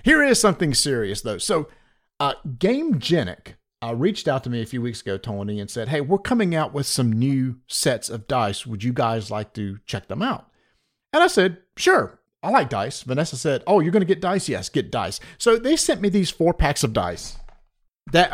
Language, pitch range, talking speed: English, 115-170 Hz, 220 wpm